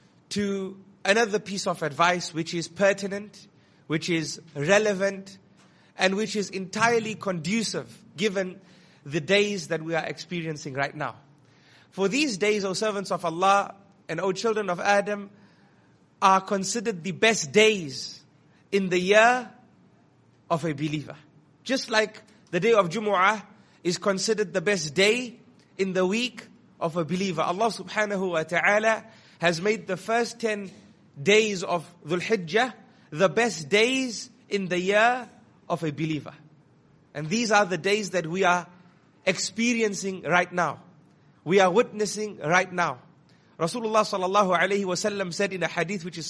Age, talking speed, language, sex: 30-49, 145 wpm, English, male